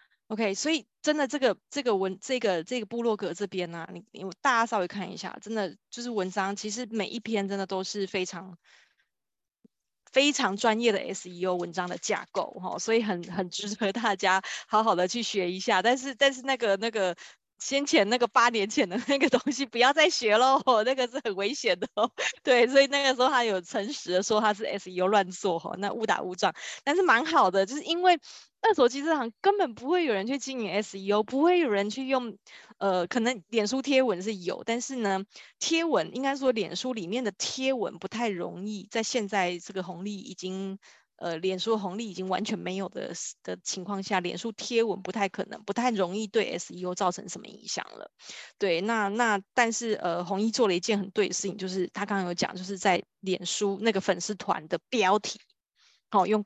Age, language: 20-39, Chinese